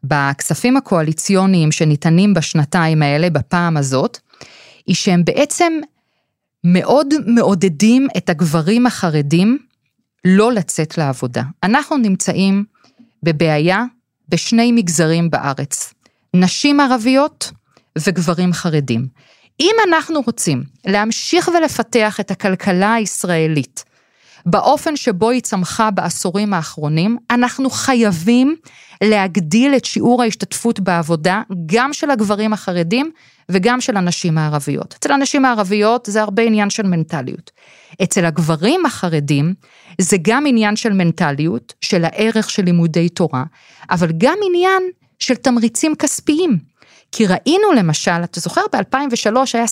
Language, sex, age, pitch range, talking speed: Hebrew, female, 30-49, 170-245 Hz, 110 wpm